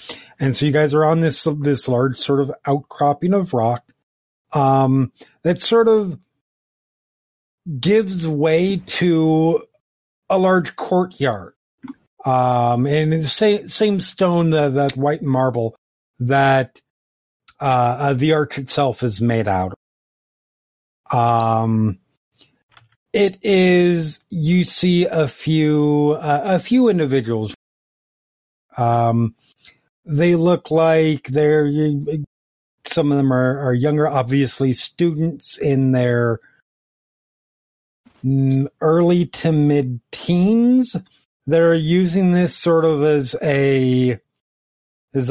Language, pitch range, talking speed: English, 125-160 Hz, 110 wpm